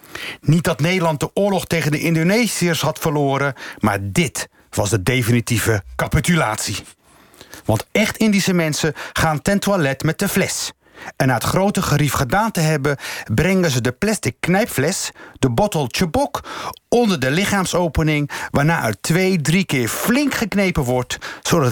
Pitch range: 130-175 Hz